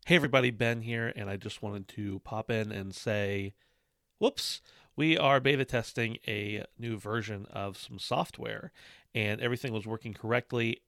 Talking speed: 160 wpm